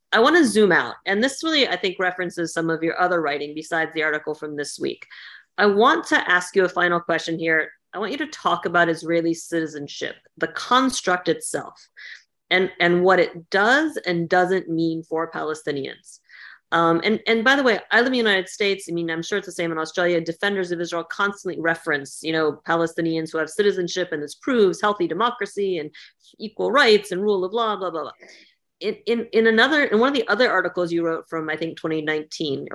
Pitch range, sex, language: 165-205 Hz, female, English